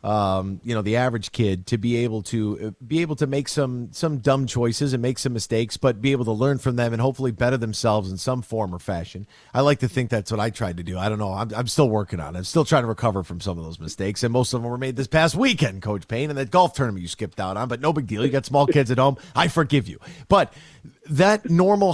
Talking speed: 285 wpm